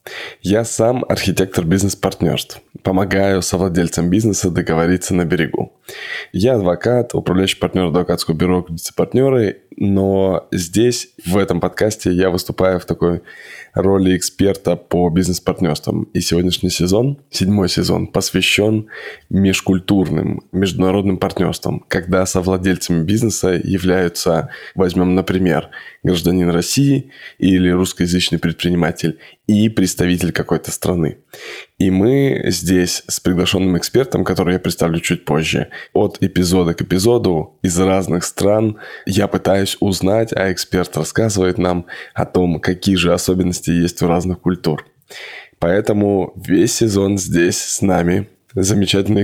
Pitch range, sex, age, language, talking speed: 90-100 Hz, male, 20-39, Russian, 115 wpm